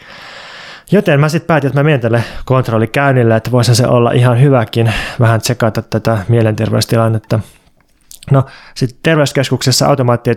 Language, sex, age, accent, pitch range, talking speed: Finnish, male, 20-39, native, 115-135 Hz, 145 wpm